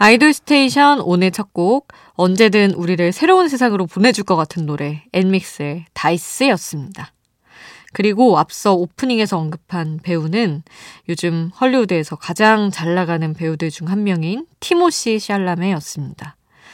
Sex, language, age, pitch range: female, Korean, 20-39, 165-225 Hz